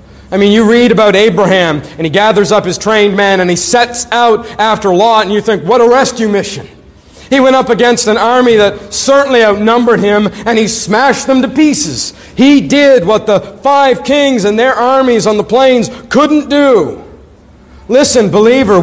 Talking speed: 185 wpm